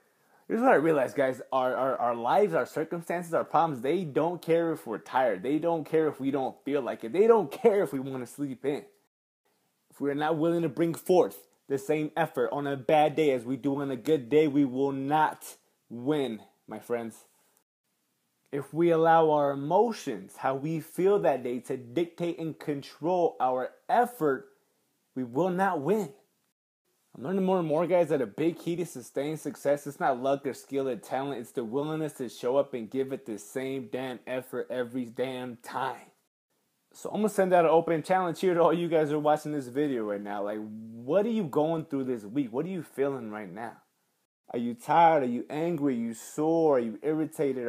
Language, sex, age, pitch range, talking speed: English, male, 20-39, 130-165 Hz, 210 wpm